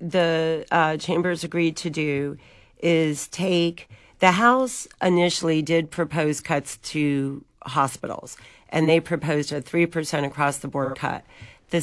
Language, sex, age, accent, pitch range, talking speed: English, female, 40-59, American, 145-165 Hz, 130 wpm